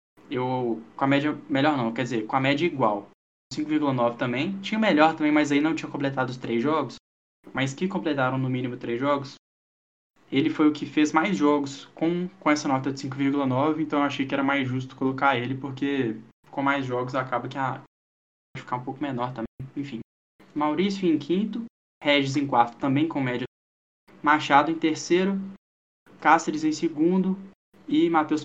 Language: Portuguese